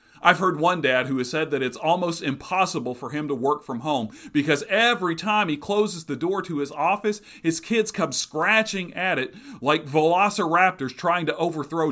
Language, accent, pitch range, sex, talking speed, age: English, American, 145-210 Hz, male, 190 wpm, 40-59